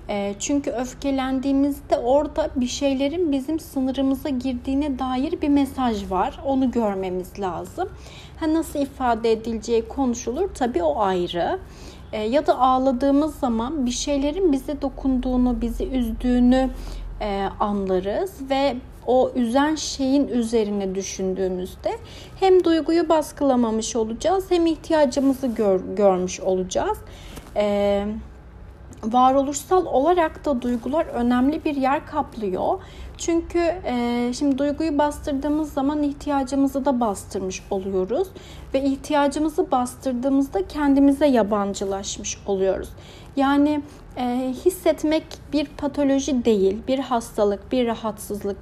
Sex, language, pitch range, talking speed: female, Turkish, 225-295 Hz, 100 wpm